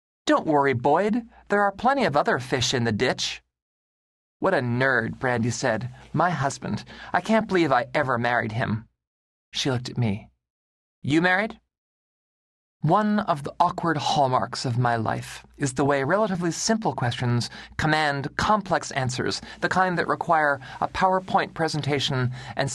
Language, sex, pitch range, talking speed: English, male, 115-160 Hz, 150 wpm